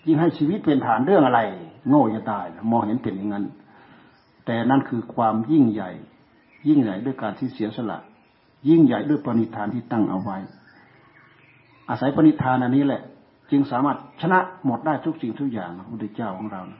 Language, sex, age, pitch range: Thai, male, 60-79, 110-135 Hz